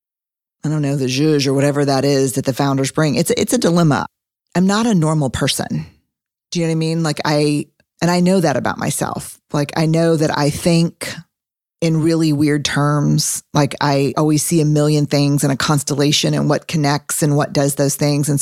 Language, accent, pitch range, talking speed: English, American, 140-160 Hz, 210 wpm